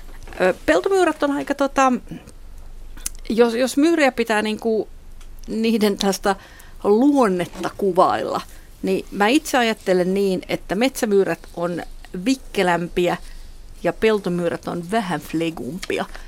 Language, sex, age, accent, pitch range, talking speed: Finnish, female, 50-69, native, 175-225 Hz, 100 wpm